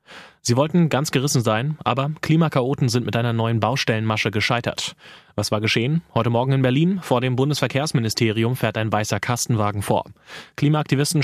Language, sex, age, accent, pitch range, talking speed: German, male, 30-49, German, 110-135 Hz, 155 wpm